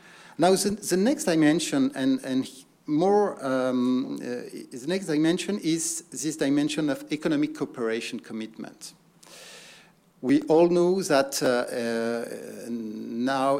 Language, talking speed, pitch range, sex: English, 120 wpm, 125-165 Hz, male